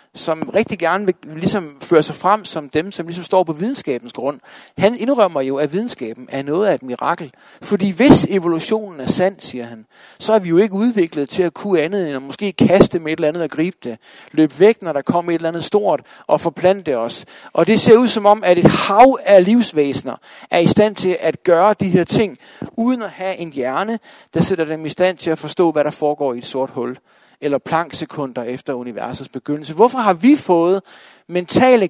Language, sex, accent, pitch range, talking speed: Danish, male, native, 145-205 Hz, 220 wpm